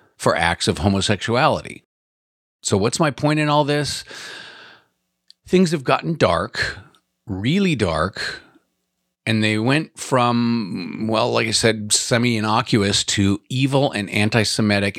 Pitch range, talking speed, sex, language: 95-135 Hz, 120 wpm, male, English